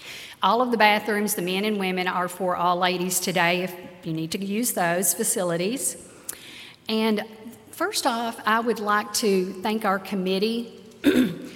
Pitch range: 180-215 Hz